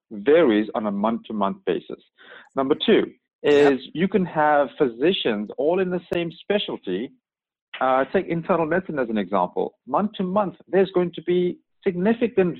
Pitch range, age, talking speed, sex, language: 125-185 Hz, 50-69, 145 wpm, male, English